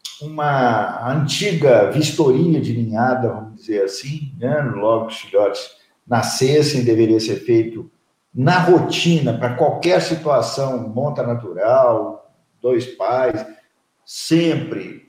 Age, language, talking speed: 50-69, Portuguese, 105 wpm